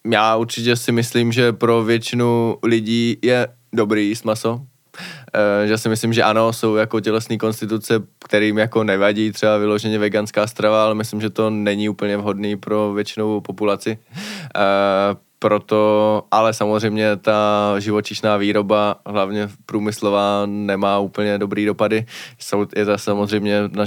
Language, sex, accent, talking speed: Czech, male, native, 145 wpm